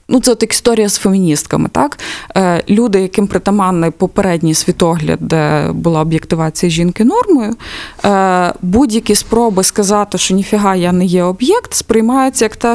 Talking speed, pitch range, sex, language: 145 wpm, 180-235 Hz, female, Ukrainian